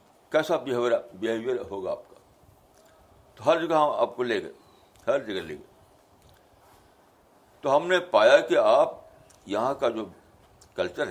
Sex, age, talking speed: male, 60-79, 140 wpm